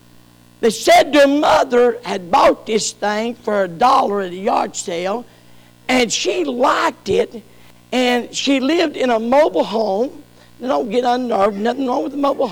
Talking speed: 170 wpm